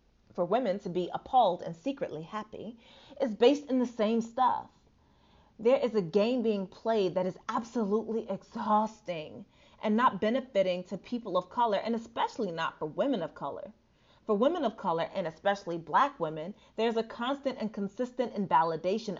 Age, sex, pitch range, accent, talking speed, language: 30-49, female, 180-230 Hz, American, 165 wpm, English